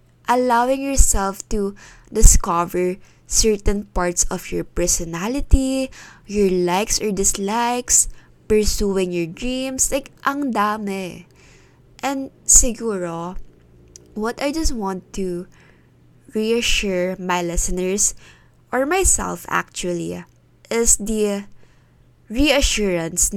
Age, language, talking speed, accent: 20-39, Filipino, 90 wpm, native